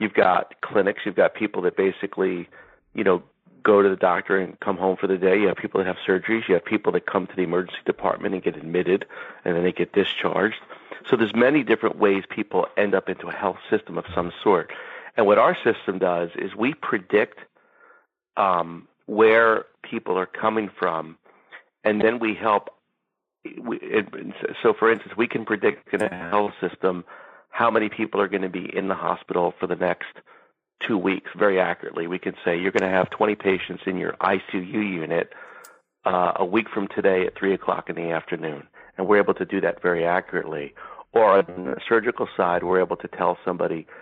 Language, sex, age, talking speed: English, male, 40-59, 200 wpm